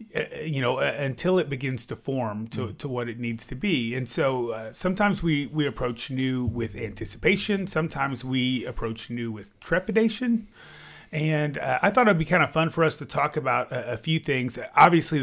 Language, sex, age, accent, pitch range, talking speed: English, male, 30-49, American, 115-145 Hz, 195 wpm